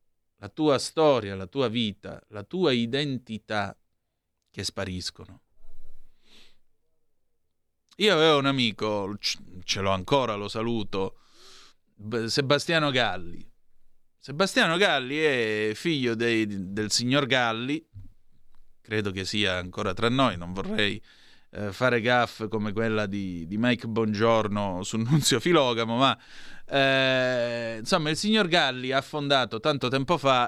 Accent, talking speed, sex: native, 115 wpm, male